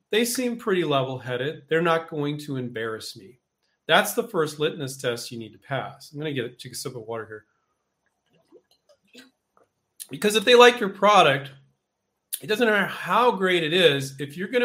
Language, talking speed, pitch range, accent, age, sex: English, 190 wpm, 135-185 Hz, American, 40-59, male